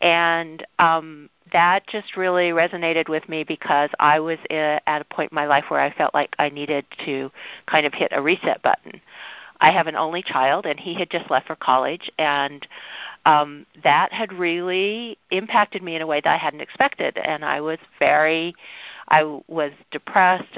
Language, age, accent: English, 50-69, American